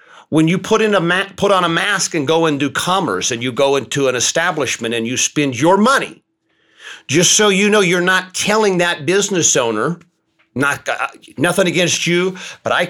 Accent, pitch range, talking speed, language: American, 130-185 Hz, 175 wpm, English